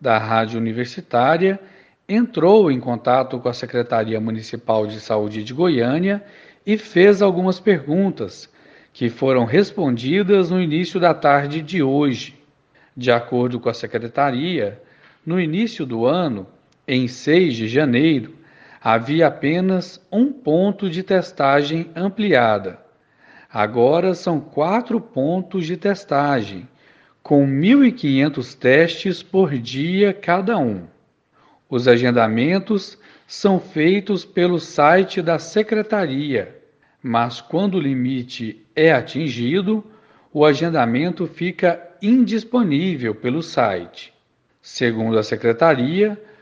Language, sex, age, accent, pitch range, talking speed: Portuguese, male, 50-69, Brazilian, 125-190 Hz, 105 wpm